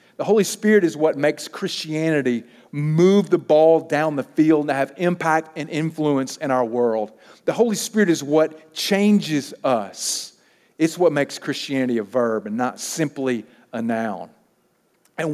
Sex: male